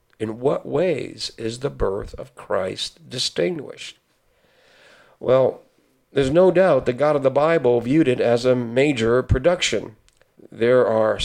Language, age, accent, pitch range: English, 50-69, American, 110-155 Hz